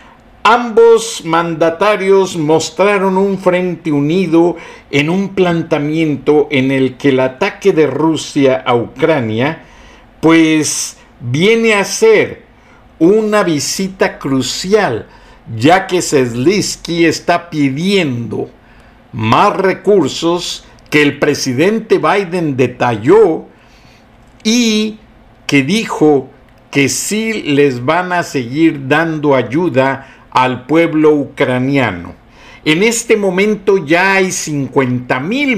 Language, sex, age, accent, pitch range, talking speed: Spanish, male, 60-79, Mexican, 140-195 Hz, 100 wpm